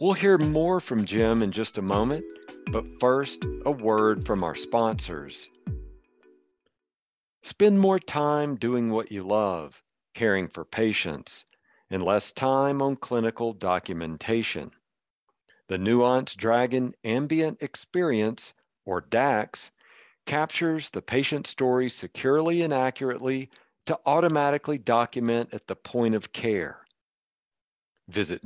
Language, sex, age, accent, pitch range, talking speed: English, male, 50-69, American, 110-140 Hz, 115 wpm